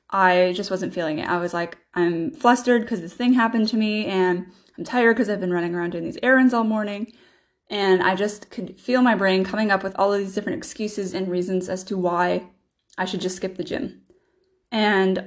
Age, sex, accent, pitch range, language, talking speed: 10-29, female, American, 180-215 Hz, English, 220 wpm